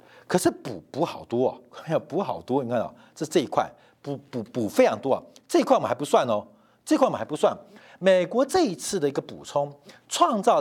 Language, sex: Chinese, male